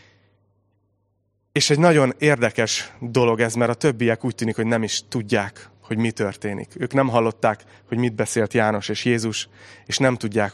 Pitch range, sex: 105-130 Hz, male